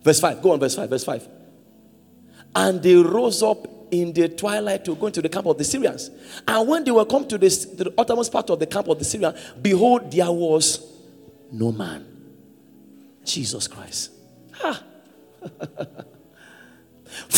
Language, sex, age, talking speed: English, male, 40-59, 165 wpm